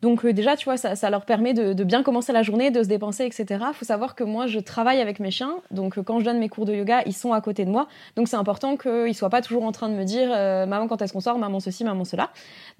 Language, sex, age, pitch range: French, female, 20-39, 210-250 Hz